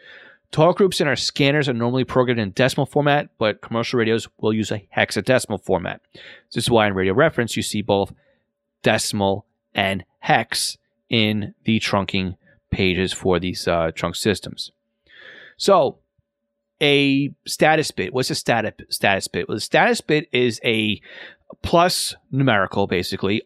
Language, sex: English, male